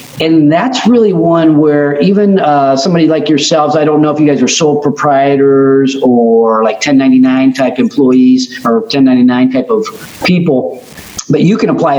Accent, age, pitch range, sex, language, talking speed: American, 40-59, 135-200 Hz, male, English, 165 wpm